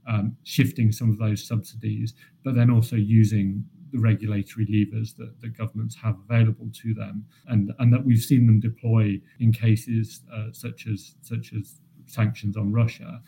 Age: 30-49